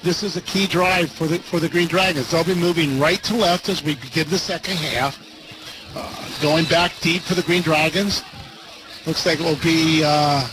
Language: English